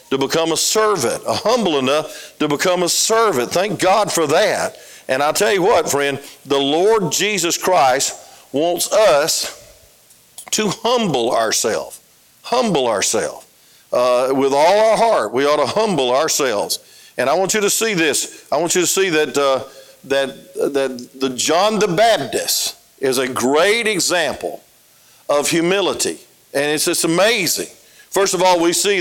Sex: male